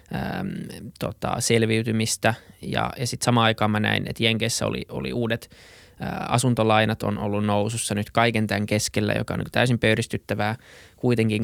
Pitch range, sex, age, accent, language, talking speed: 105-120 Hz, male, 20-39, native, Finnish, 150 wpm